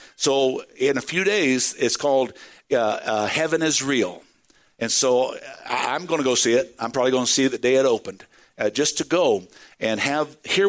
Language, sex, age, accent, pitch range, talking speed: English, male, 60-79, American, 120-160 Hz, 210 wpm